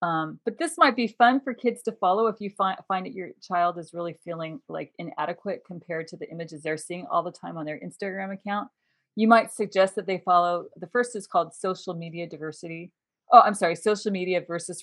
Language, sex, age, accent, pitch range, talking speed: English, female, 40-59, American, 165-210 Hz, 215 wpm